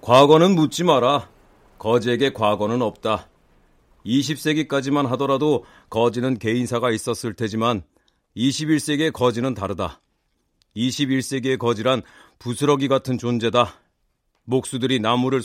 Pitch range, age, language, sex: 110-135 Hz, 40-59, Korean, male